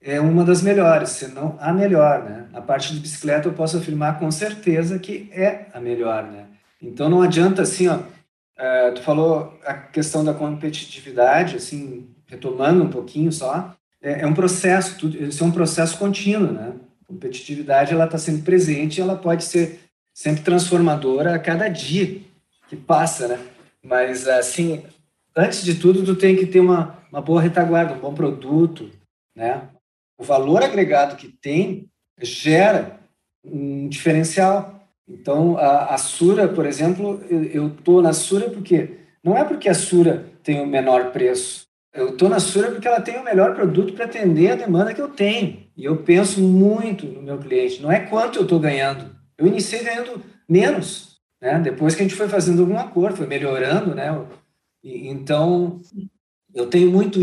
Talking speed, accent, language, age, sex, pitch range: 170 wpm, Brazilian, Portuguese, 40-59, male, 150-190 Hz